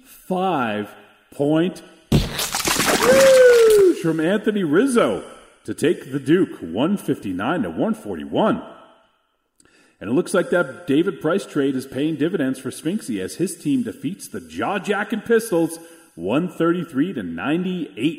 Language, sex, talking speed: English, male, 110 wpm